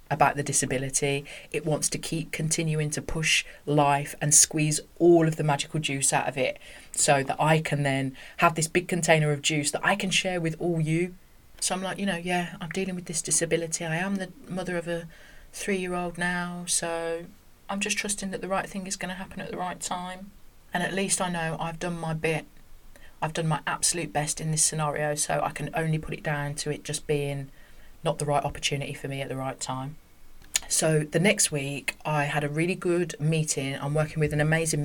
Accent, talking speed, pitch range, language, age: British, 215 wpm, 145-170 Hz, English, 30-49